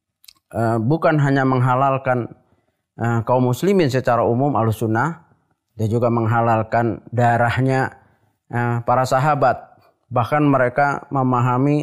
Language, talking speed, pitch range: Indonesian, 100 wpm, 115-135 Hz